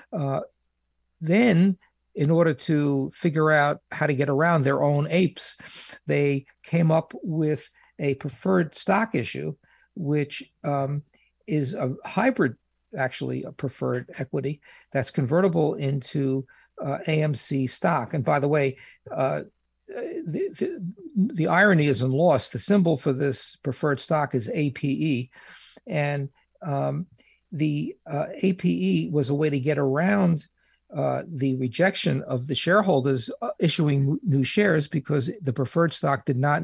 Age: 50-69